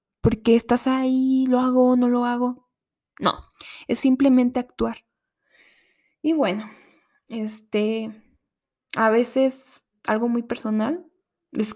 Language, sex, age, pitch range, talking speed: Spanish, female, 10-29, 225-290 Hz, 115 wpm